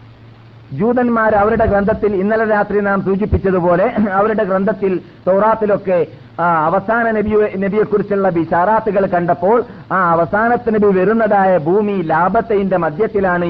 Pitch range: 155-185 Hz